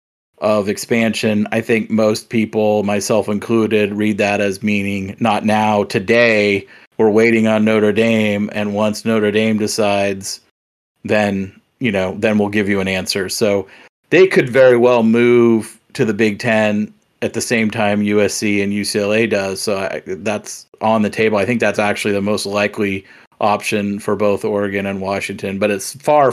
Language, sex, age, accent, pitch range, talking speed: English, male, 40-59, American, 100-110 Hz, 170 wpm